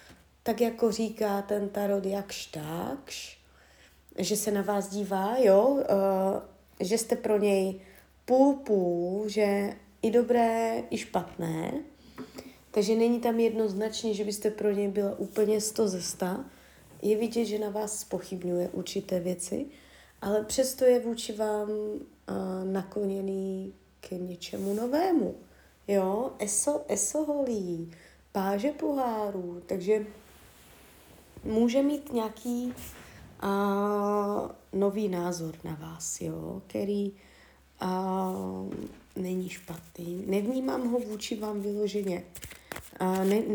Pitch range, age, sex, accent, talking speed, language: 185-220 Hz, 30-49, female, native, 110 wpm, Czech